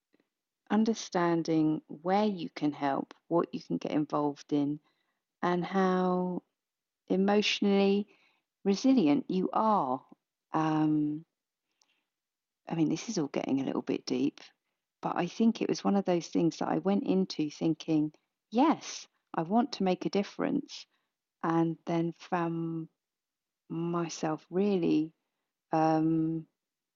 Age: 40-59